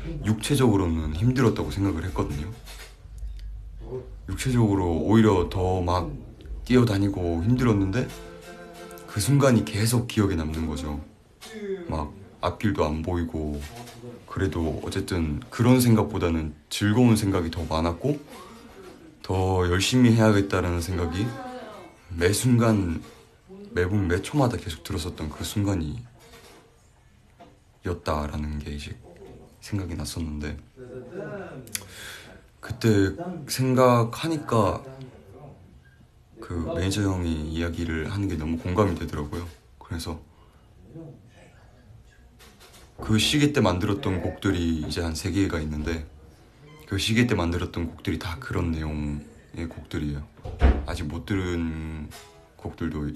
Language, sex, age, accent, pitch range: Korean, male, 30-49, native, 80-110 Hz